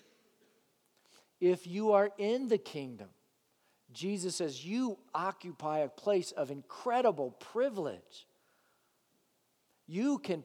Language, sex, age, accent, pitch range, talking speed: English, male, 50-69, American, 145-185 Hz, 100 wpm